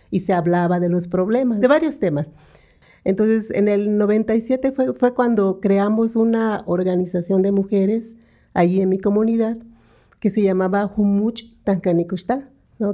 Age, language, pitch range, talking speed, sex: 50-69, Spanish, 185-225 Hz, 140 wpm, female